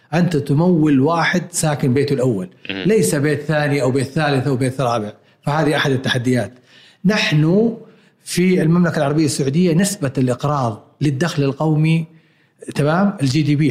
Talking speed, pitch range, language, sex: 135 wpm, 145-175 Hz, Arabic, male